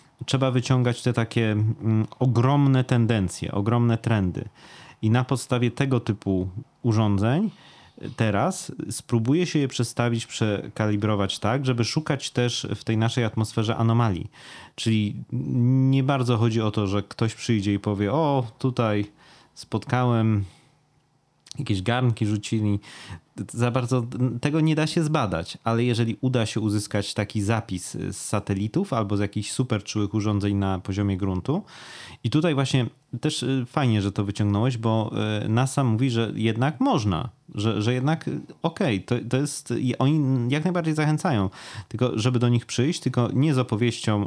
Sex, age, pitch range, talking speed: male, 30-49, 105-130 Hz, 145 wpm